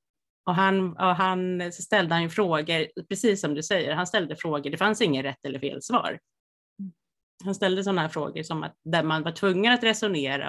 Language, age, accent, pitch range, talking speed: Swedish, 30-49, native, 155-195 Hz, 200 wpm